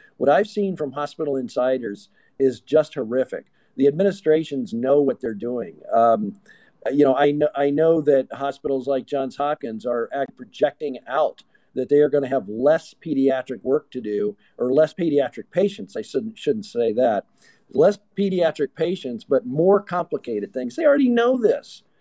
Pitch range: 130-200 Hz